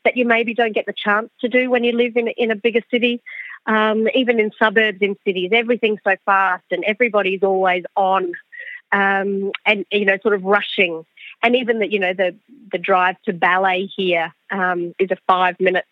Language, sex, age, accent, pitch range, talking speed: English, female, 30-49, Australian, 185-225 Hz, 195 wpm